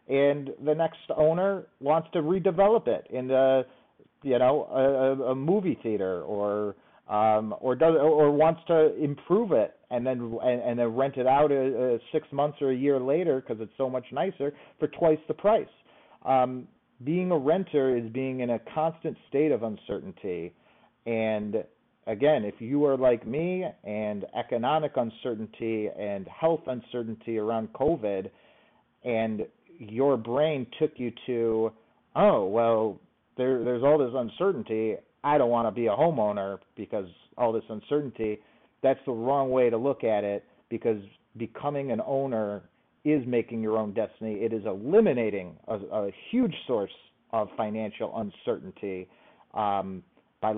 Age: 40-59